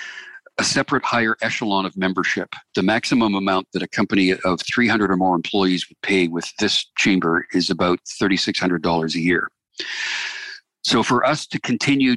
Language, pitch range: English, 90-105 Hz